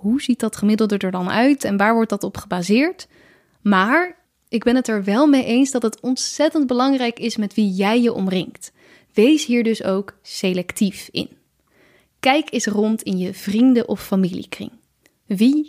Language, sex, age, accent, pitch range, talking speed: Dutch, female, 10-29, Dutch, 205-260 Hz, 175 wpm